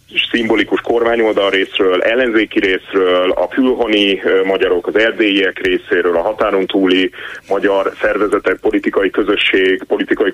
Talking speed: 110 wpm